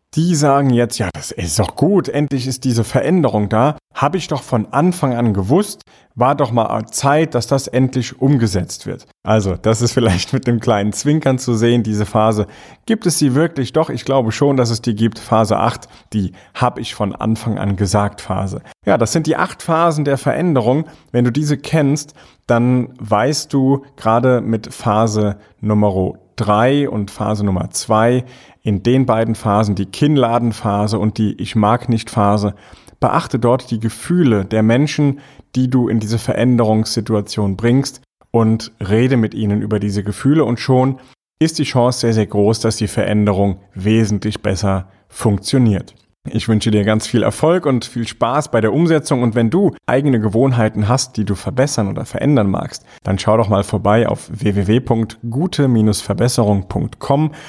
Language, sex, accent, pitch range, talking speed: German, male, German, 105-135 Hz, 170 wpm